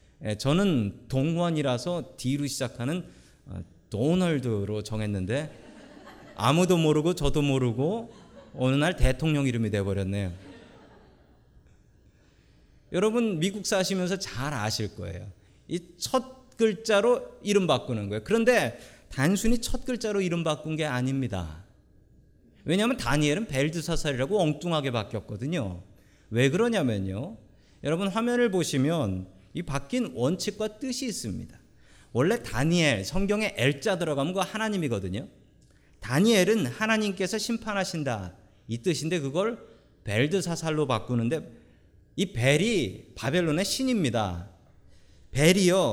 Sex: male